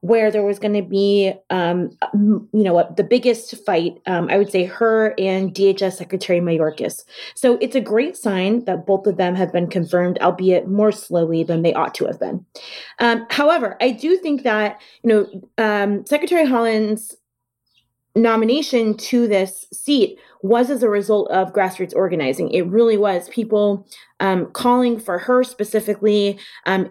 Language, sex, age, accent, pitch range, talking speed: English, female, 30-49, American, 190-235 Hz, 165 wpm